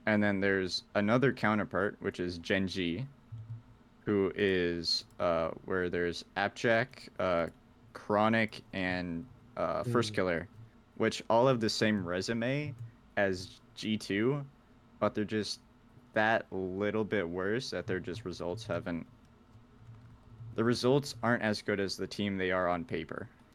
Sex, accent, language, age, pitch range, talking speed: male, American, English, 20-39, 95-120 Hz, 140 wpm